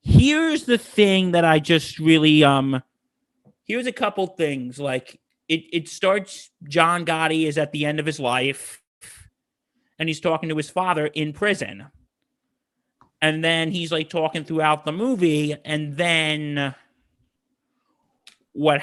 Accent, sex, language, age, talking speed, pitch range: American, male, English, 30-49, 140 wpm, 150-190 Hz